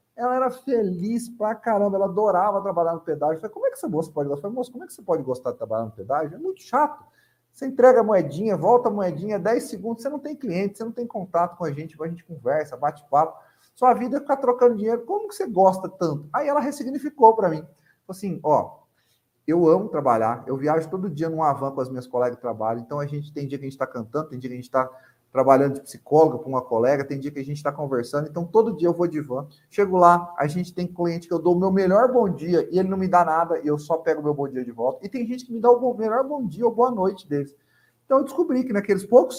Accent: Brazilian